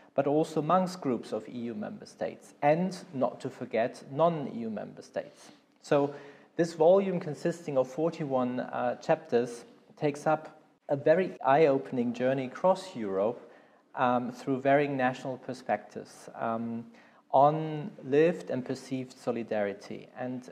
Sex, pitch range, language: male, 125-155 Hz, English